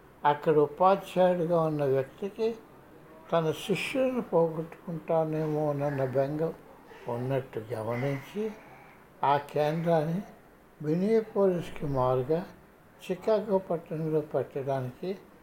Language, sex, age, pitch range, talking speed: Telugu, male, 60-79, 145-190 Hz, 70 wpm